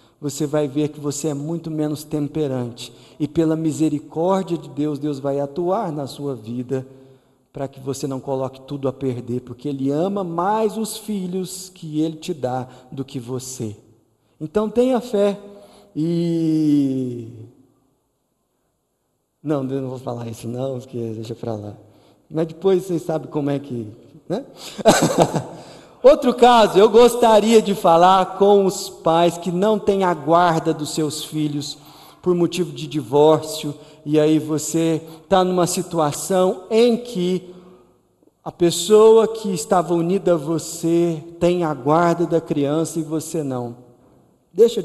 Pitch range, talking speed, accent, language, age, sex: 135-180 Hz, 145 wpm, Brazilian, Portuguese, 40-59, male